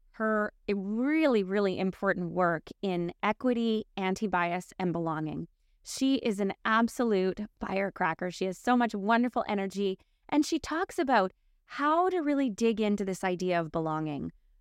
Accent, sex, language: American, female, English